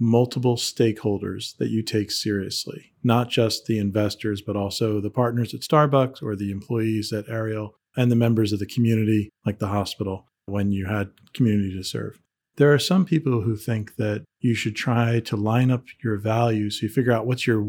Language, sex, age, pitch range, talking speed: English, male, 40-59, 105-125 Hz, 195 wpm